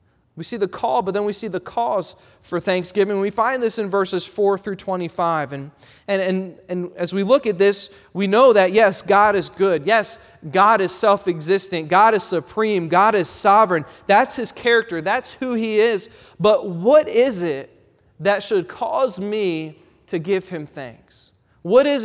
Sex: male